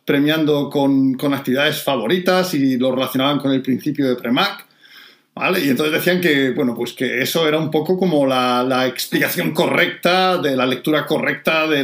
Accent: Spanish